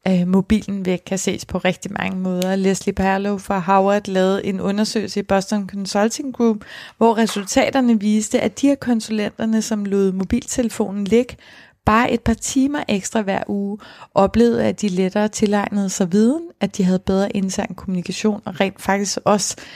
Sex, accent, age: female, native, 30-49